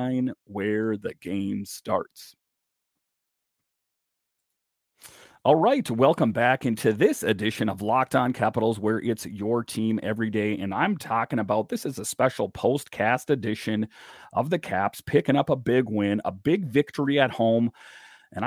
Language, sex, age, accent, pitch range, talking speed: English, male, 40-59, American, 105-135 Hz, 145 wpm